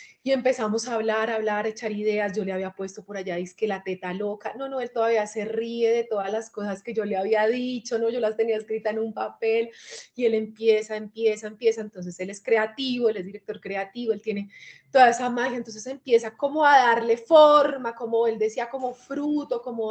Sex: female